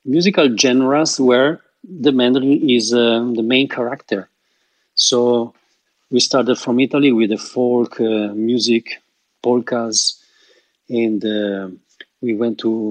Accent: Italian